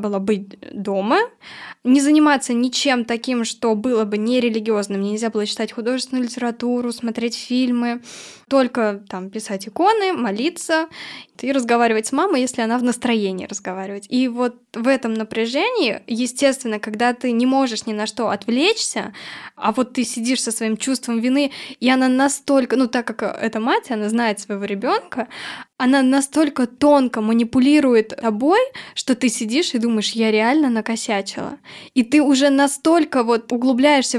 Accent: native